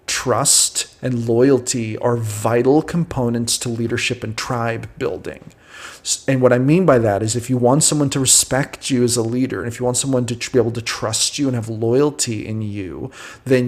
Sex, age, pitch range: male, 30-49, 115-130 Hz